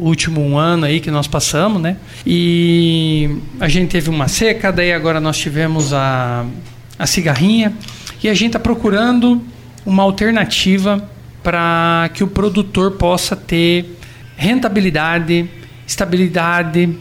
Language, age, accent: Portuguese, 50-69, Brazilian